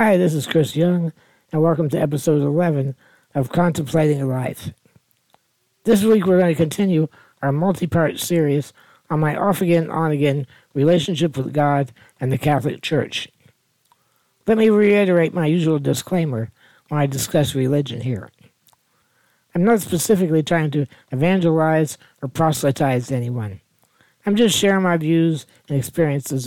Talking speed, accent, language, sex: 140 wpm, American, English, male